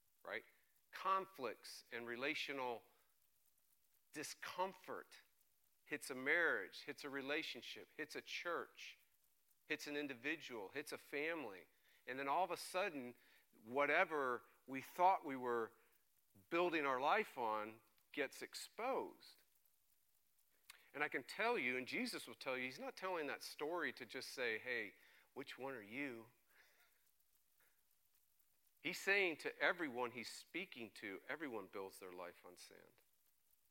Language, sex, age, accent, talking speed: English, male, 50-69, American, 130 wpm